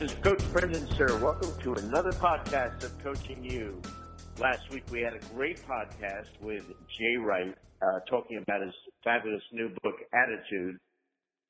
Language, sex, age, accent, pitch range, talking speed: English, male, 60-79, American, 100-115 Hz, 160 wpm